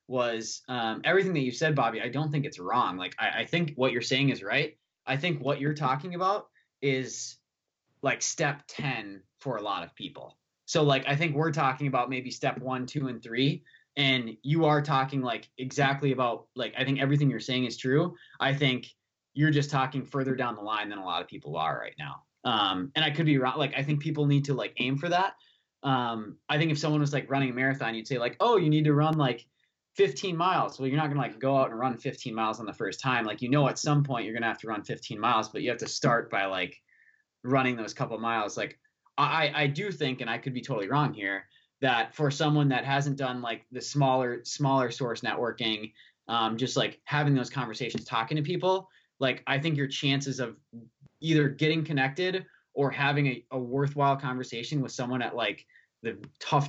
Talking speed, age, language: 225 wpm, 20-39, English